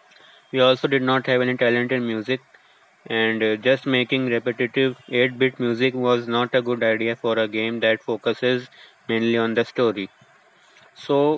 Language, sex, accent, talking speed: English, male, Indian, 160 wpm